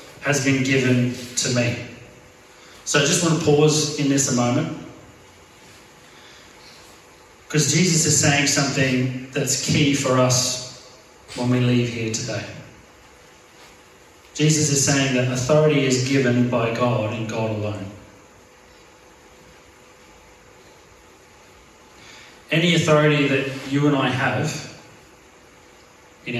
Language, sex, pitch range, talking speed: English, male, 125-145 Hz, 110 wpm